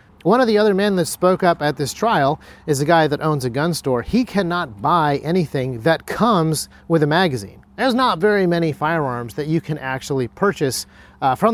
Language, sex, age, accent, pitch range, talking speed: English, male, 40-59, American, 130-180 Hz, 210 wpm